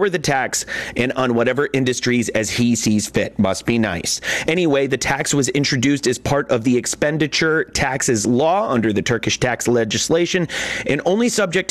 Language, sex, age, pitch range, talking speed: English, male, 30-49, 115-155 Hz, 170 wpm